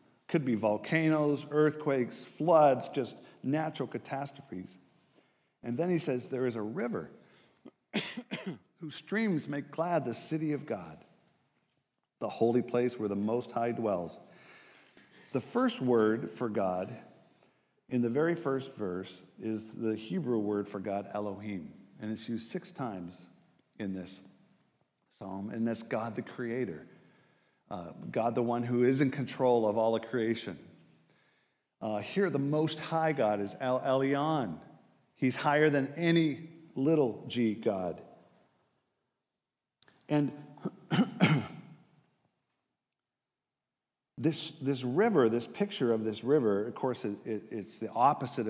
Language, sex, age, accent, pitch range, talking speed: English, male, 50-69, American, 110-150 Hz, 130 wpm